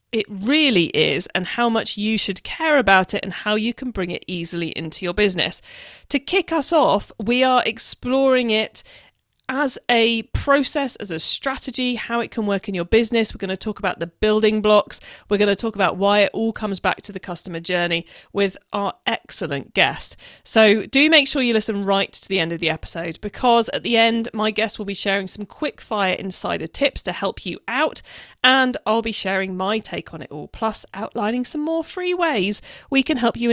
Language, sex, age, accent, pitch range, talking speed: English, female, 40-59, British, 190-250 Hz, 210 wpm